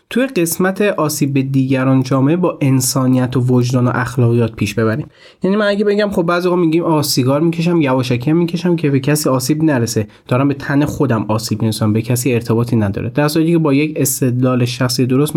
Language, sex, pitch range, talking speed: Persian, male, 125-160 Hz, 195 wpm